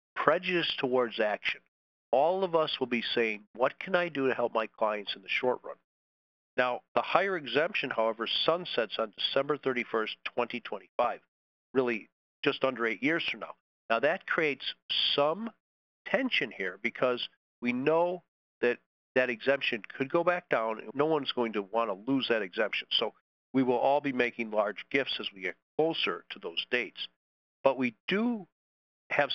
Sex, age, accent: male, 50-69, American